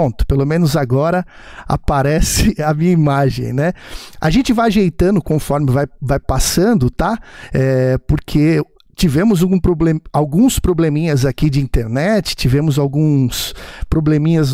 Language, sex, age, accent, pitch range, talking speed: Portuguese, male, 50-69, Brazilian, 145-190 Hz, 130 wpm